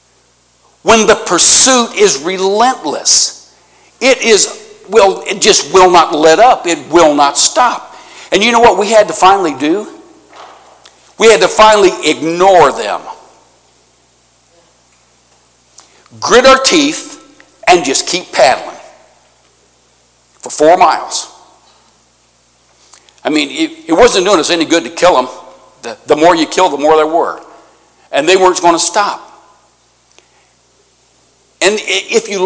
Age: 60-79